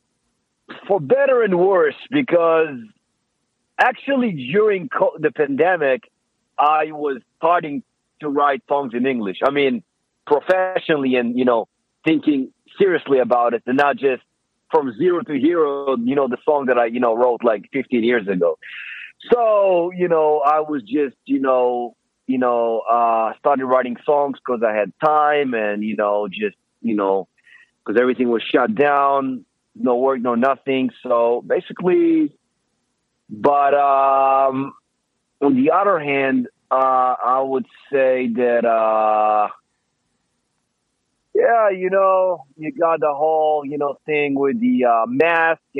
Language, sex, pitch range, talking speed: English, male, 120-160 Hz, 140 wpm